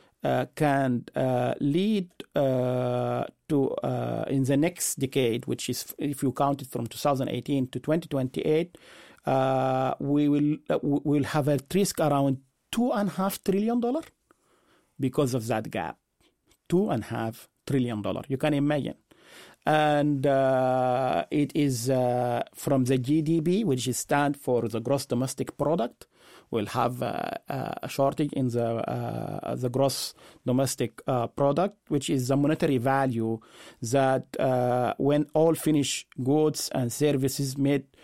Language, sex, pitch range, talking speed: English, male, 125-150 Hz, 145 wpm